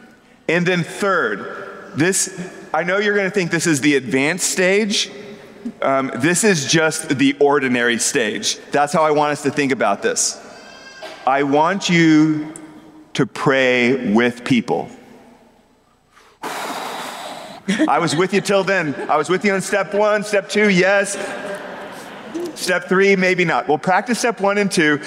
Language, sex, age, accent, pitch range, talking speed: English, male, 30-49, American, 140-195 Hz, 150 wpm